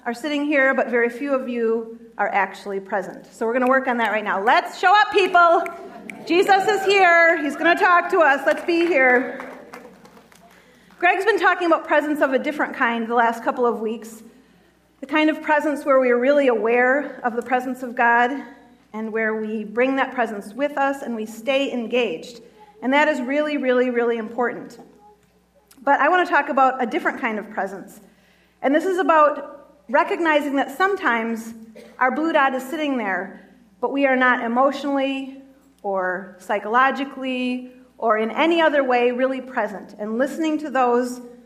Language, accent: English, American